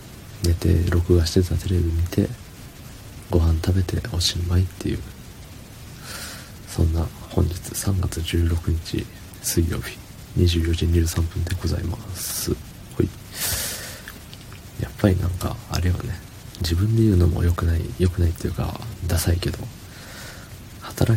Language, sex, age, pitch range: Japanese, male, 40-59, 90-110 Hz